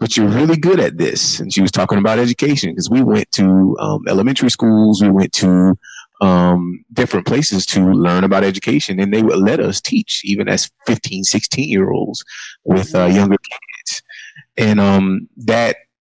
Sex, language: male, English